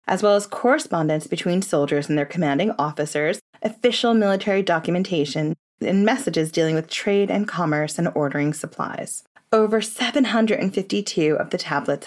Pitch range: 160-220 Hz